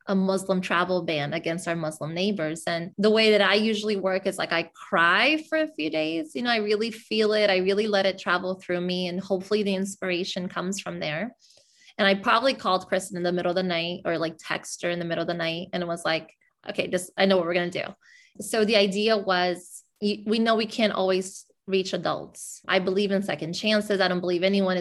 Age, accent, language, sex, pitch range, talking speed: 20-39, American, English, female, 180-210 Hz, 230 wpm